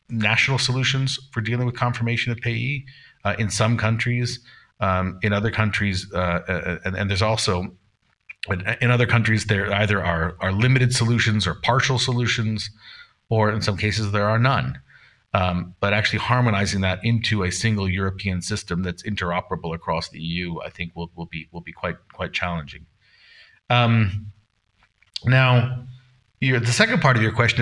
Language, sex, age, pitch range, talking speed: English, male, 40-59, 95-125 Hz, 165 wpm